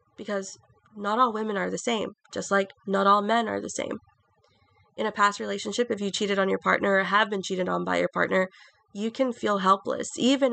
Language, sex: English, female